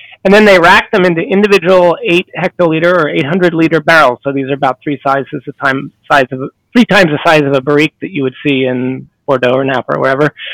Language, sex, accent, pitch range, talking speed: English, male, American, 140-180 Hz, 235 wpm